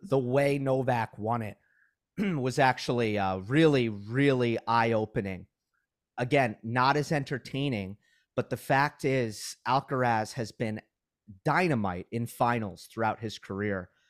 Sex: male